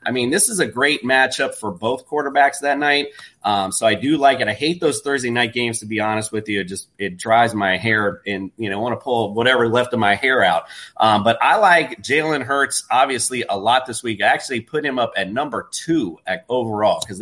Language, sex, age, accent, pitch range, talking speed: English, male, 30-49, American, 110-145 Hz, 245 wpm